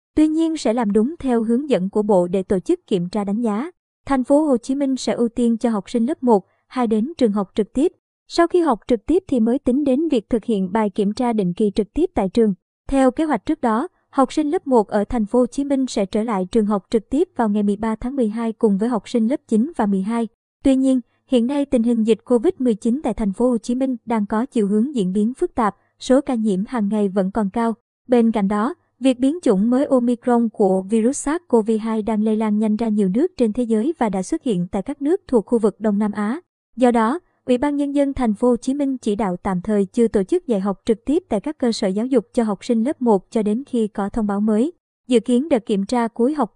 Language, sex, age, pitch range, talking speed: Vietnamese, male, 20-39, 215-260 Hz, 260 wpm